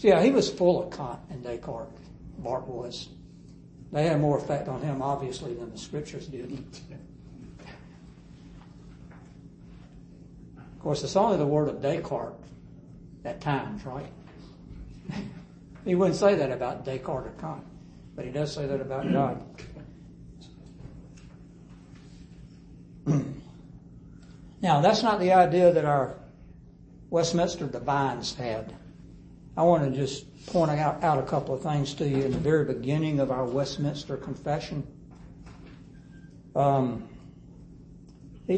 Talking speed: 125 wpm